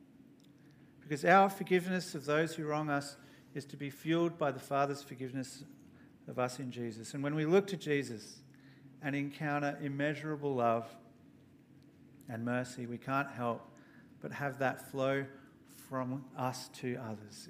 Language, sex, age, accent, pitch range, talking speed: English, male, 50-69, Australian, 130-155 Hz, 150 wpm